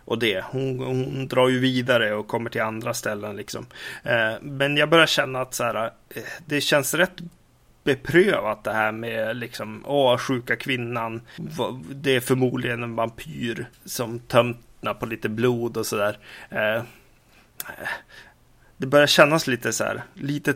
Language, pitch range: Swedish, 115-135 Hz